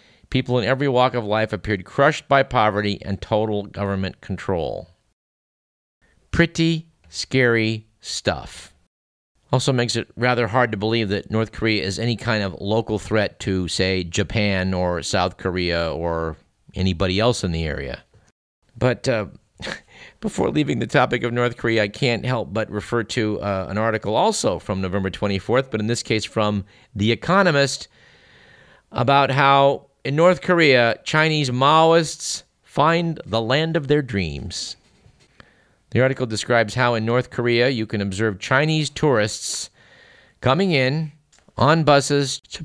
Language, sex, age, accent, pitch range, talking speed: English, male, 50-69, American, 100-130 Hz, 145 wpm